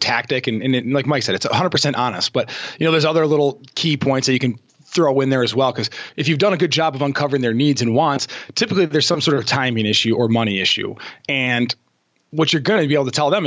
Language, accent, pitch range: English, American, 125-160 Hz